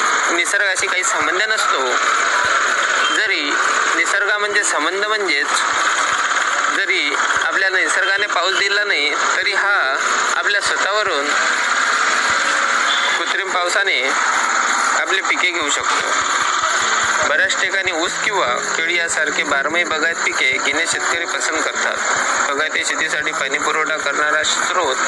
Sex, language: male, Marathi